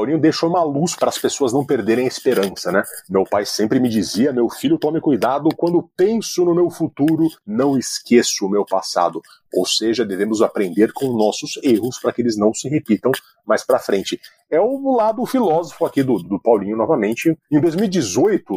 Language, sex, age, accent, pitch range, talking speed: Portuguese, male, 40-59, Brazilian, 125-180 Hz, 185 wpm